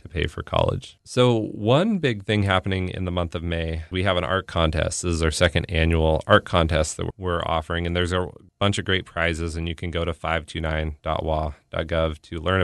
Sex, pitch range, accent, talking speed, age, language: male, 80-95 Hz, American, 205 wpm, 30-49, English